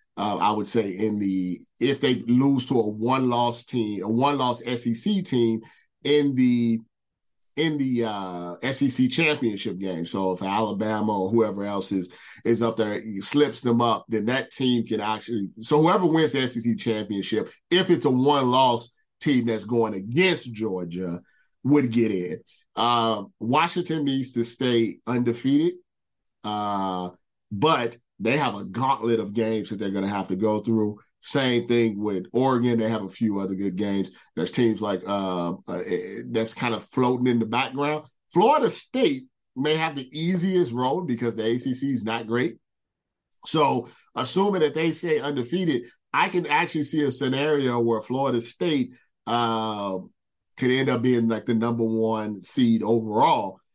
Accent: American